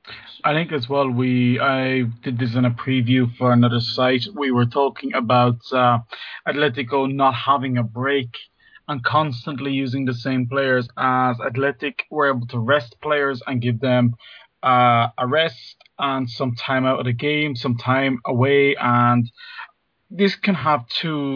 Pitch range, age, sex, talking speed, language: 125-150 Hz, 30-49, male, 165 wpm, English